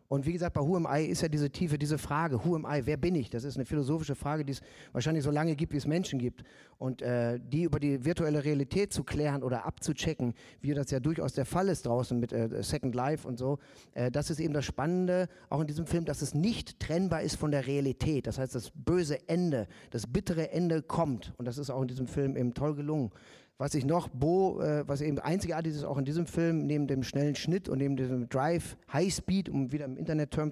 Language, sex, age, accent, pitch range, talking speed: German, male, 40-59, German, 135-160 Hz, 240 wpm